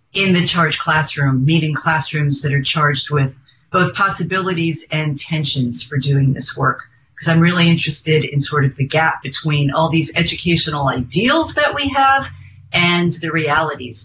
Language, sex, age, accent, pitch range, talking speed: English, female, 40-59, American, 150-175 Hz, 160 wpm